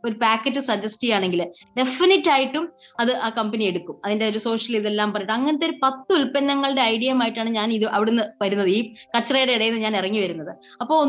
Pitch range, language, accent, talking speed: 215-290 Hz, Malayalam, native, 145 wpm